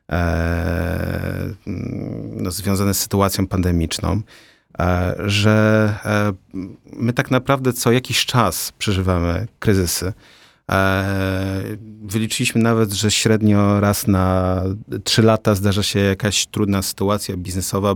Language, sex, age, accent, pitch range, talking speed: Polish, male, 40-59, native, 95-110 Hz, 105 wpm